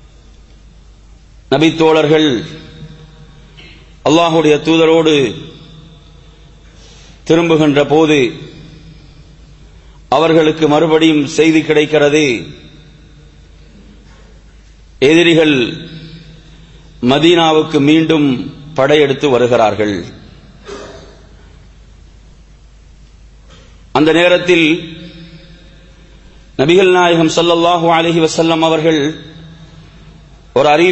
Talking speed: 35 wpm